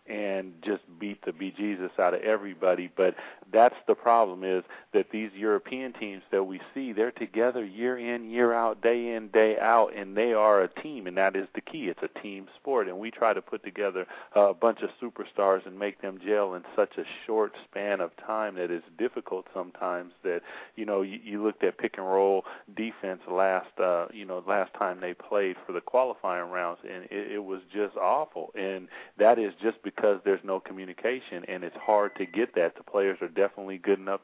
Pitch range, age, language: 95-110 Hz, 40-59, English